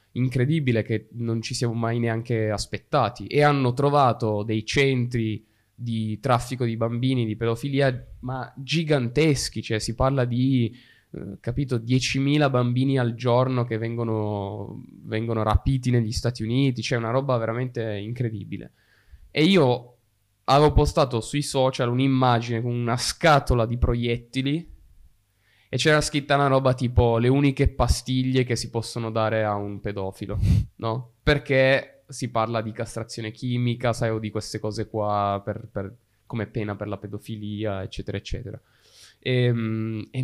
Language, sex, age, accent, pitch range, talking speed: Italian, male, 20-39, native, 110-130 Hz, 140 wpm